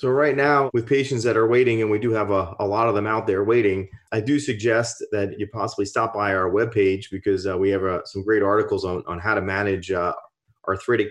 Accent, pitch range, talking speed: American, 100-115 Hz, 245 wpm